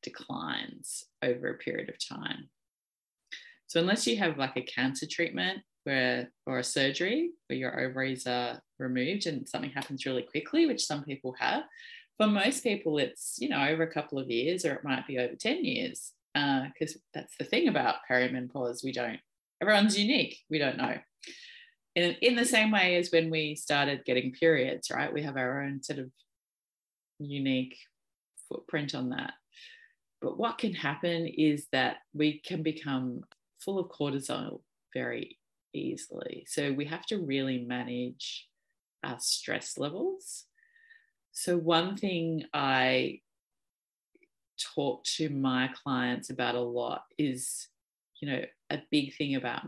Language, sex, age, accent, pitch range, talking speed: English, female, 20-39, Australian, 130-210 Hz, 155 wpm